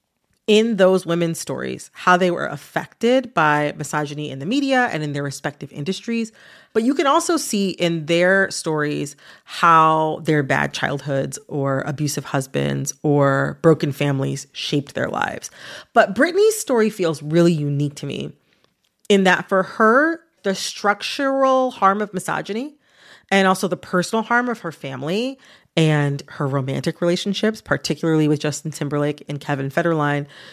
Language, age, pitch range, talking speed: English, 30-49, 150-220 Hz, 145 wpm